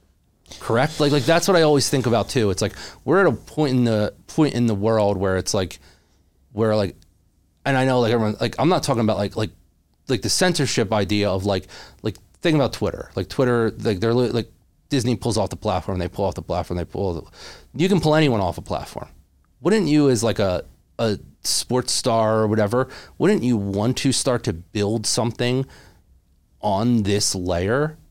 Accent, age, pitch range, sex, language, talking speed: American, 30-49, 95-125 Hz, male, English, 205 wpm